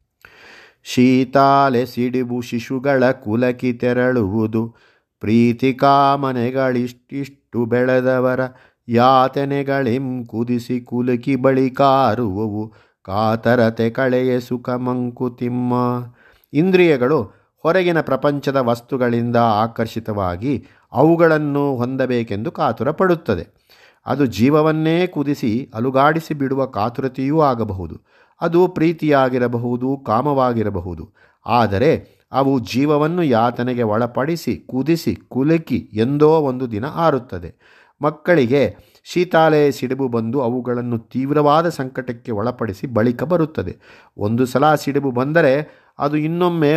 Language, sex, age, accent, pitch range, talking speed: Kannada, male, 50-69, native, 120-140 Hz, 80 wpm